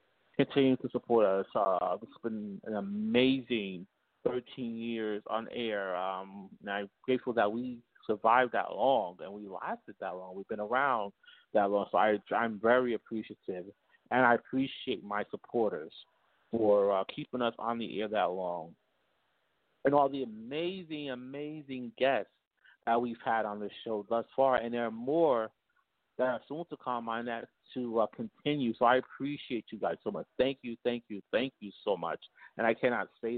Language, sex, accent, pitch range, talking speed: English, male, American, 110-130 Hz, 175 wpm